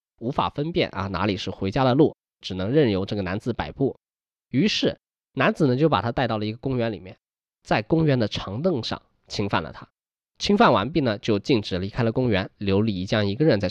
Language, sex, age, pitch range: Chinese, male, 20-39, 95-125 Hz